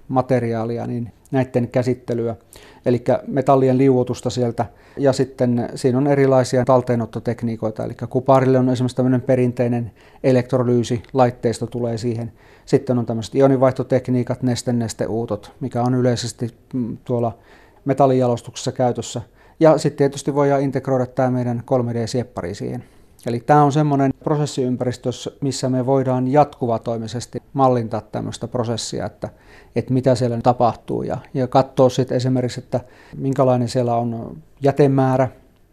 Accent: native